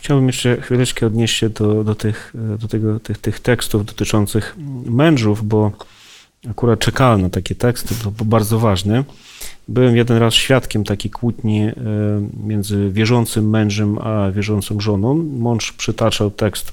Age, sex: 30-49, male